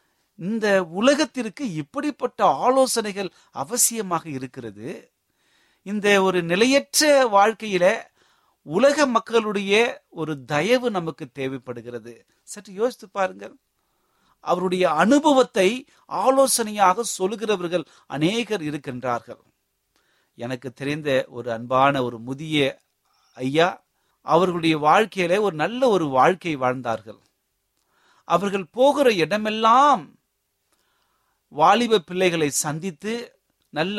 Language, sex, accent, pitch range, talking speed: Tamil, male, native, 140-215 Hz, 80 wpm